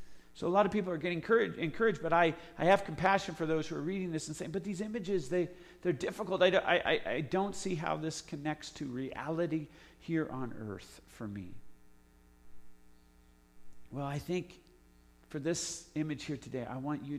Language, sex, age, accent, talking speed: English, male, 50-69, American, 180 wpm